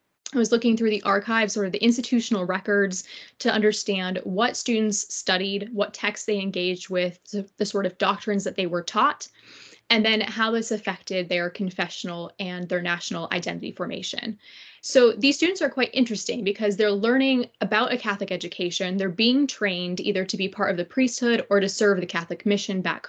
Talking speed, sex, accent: 185 wpm, female, American